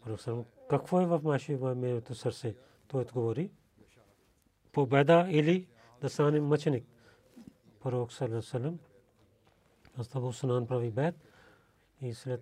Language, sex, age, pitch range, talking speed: Bulgarian, male, 40-59, 120-135 Hz, 110 wpm